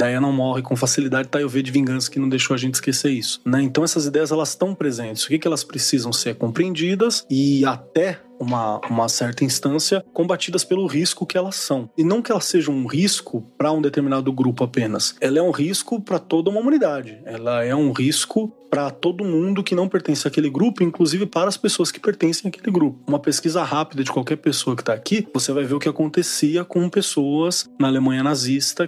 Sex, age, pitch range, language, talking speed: male, 20-39, 130-170 Hz, Portuguese, 215 wpm